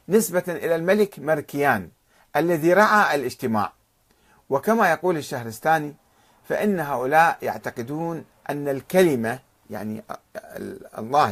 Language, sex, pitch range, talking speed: Arabic, male, 120-185 Hz, 90 wpm